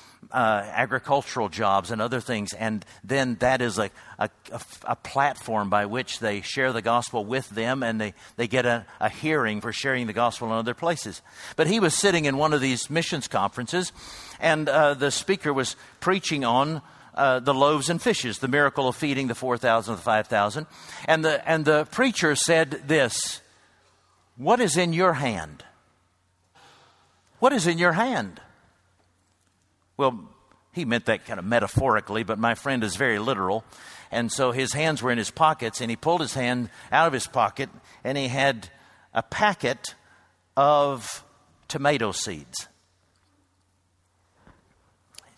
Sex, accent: male, American